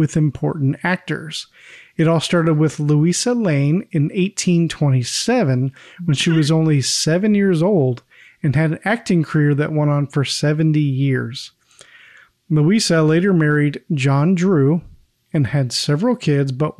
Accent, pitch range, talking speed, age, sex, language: American, 145-180 Hz, 140 wpm, 40-59, male, English